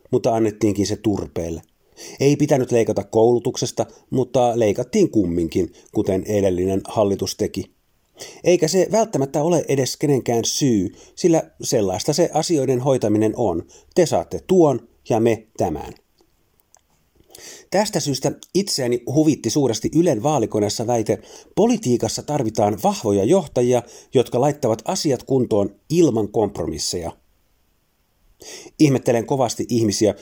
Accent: native